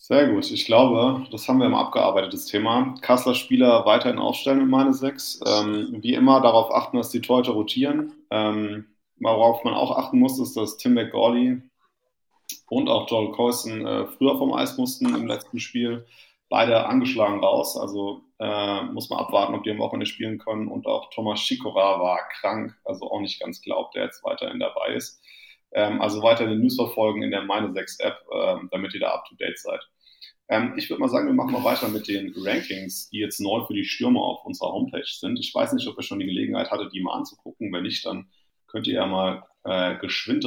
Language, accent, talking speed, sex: German, German, 200 wpm, male